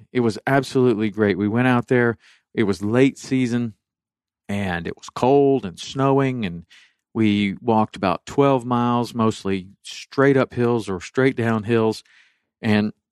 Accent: American